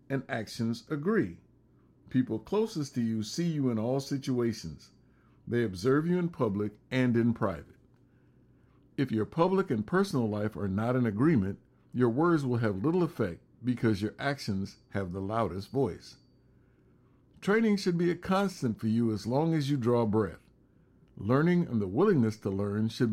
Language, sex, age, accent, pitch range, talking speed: English, male, 60-79, American, 110-145 Hz, 165 wpm